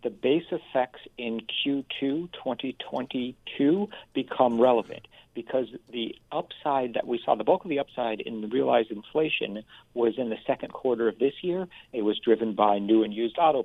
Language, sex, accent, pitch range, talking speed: English, male, American, 110-130 Hz, 170 wpm